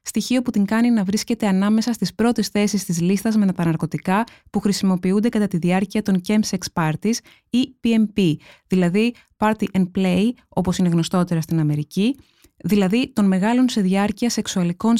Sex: female